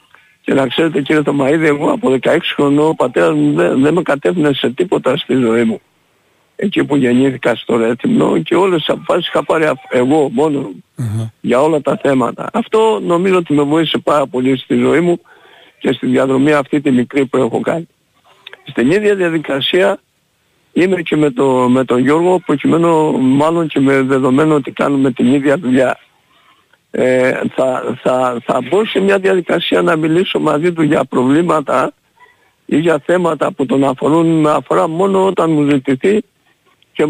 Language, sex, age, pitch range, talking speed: Greek, male, 60-79, 135-165 Hz, 165 wpm